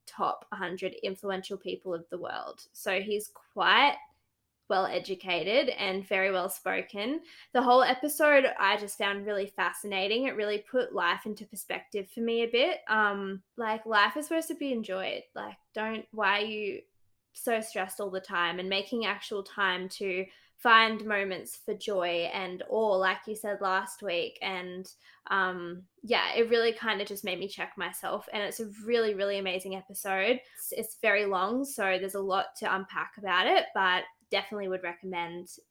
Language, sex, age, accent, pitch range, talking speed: English, female, 10-29, Australian, 190-225 Hz, 175 wpm